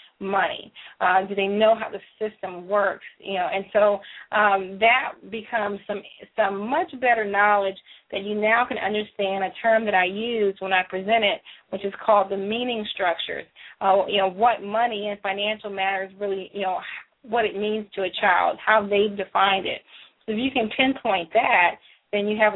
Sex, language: female, English